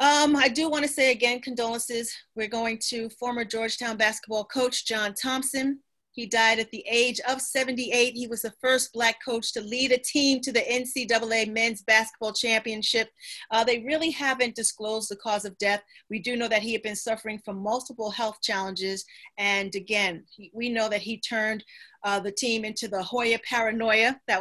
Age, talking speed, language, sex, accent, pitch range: 40-59, 185 wpm, English, female, American, 205-235 Hz